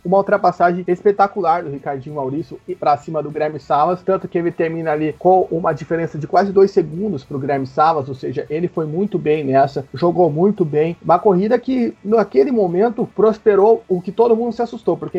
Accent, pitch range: Brazilian, 165-205 Hz